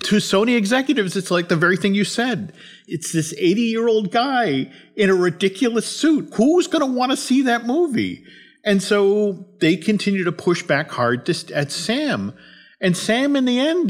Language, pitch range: English, 130-200 Hz